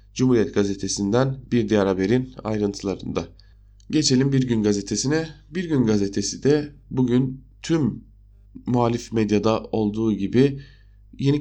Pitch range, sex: 100-130 Hz, male